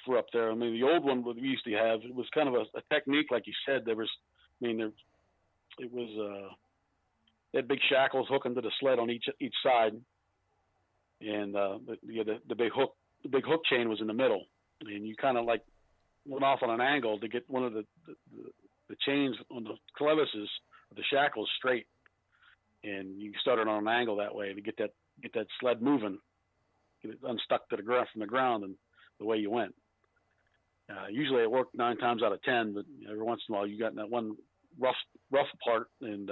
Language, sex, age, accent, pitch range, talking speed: English, male, 50-69, American, 105-130 Hz, 230 wpm